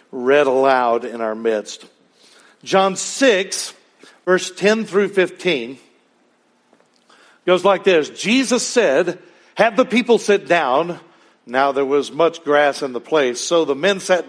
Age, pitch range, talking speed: 60-79, 155-205 Hz, 140 wpm